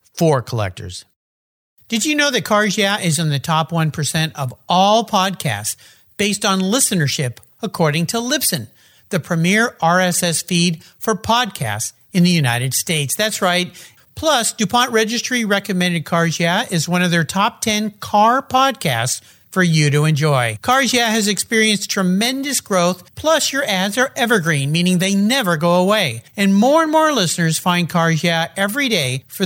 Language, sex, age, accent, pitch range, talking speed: English, male, 50-69, American, 155-220 Hz, 165 wpm